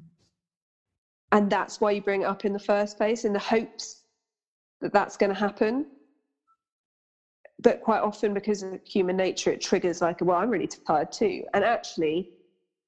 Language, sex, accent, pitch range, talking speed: English, female, British, 170-210 Hz, 170 wpm